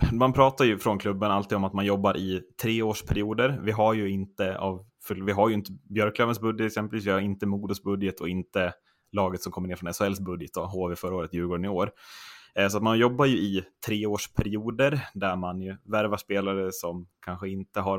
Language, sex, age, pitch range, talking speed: Swedish, male, 20-39, 90-110 Hz, 190 wpm